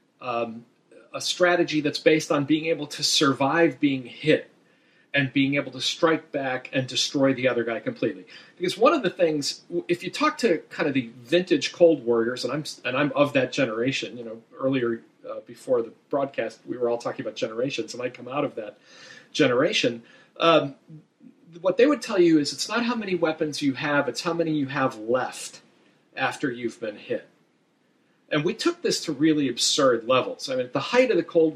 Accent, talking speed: American, 200 wpm